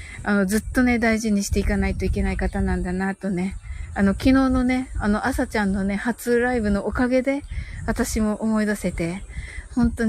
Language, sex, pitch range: Japanese, female, 185-220 Hz